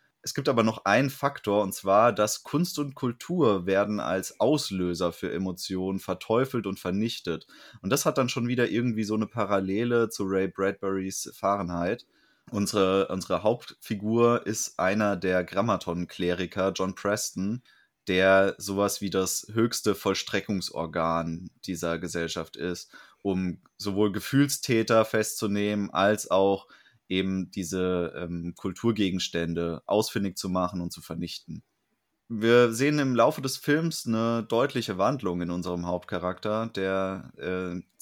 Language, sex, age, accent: German, male, 20-39, German